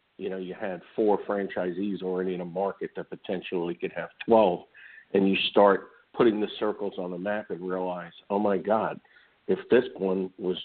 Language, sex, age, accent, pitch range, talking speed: English, male, 50-69, American, 90-100 Hz, 185 wpm